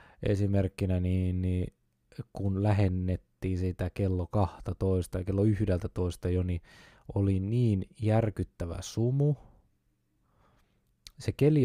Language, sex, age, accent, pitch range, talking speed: Finnish, male, 20-39, native, 90-115 Hz, 100 wpm